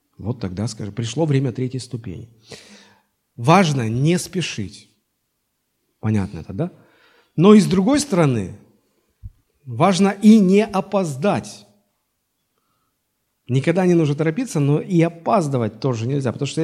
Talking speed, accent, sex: 120 wpm, native, male